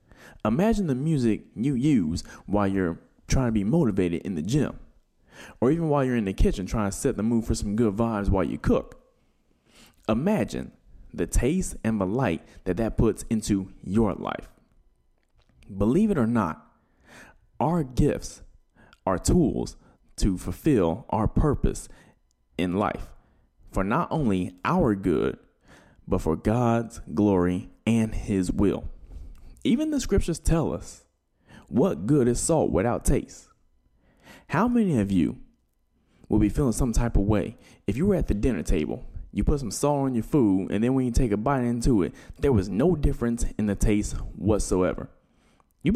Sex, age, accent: male, 20-39, American